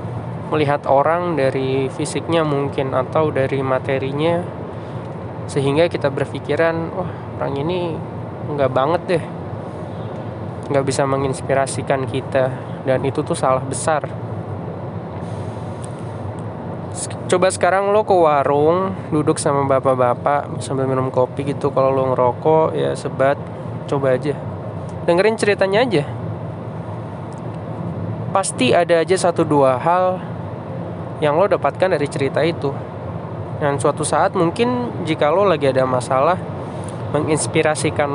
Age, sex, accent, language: 20-39, male, native, Indonesian